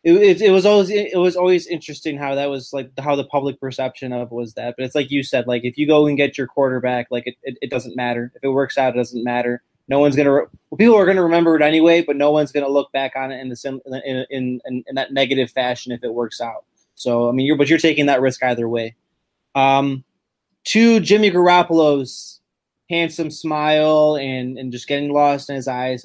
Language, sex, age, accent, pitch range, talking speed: English, male, 20-39, American, 130-155 Hz, 235 wpm